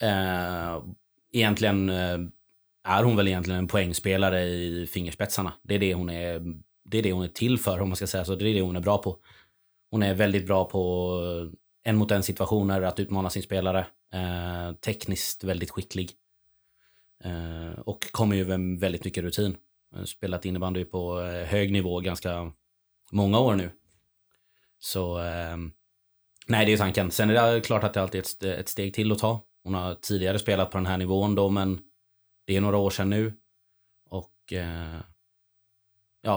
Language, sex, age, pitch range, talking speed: English, male, 30-49, 90-100 Hz, 155 wpm